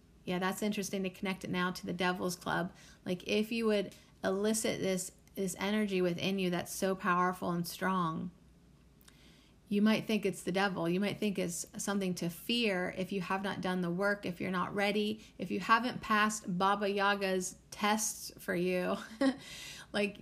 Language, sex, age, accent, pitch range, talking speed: English, female, 30-49, American, 180-205 Hz, 180 wpm